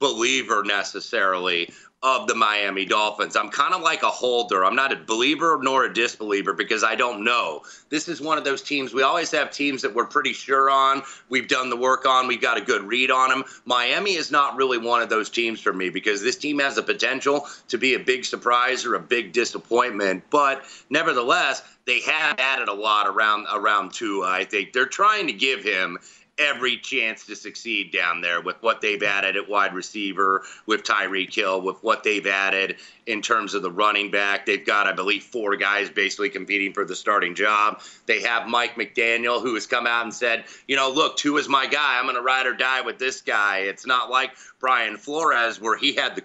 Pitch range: 100-135 Hz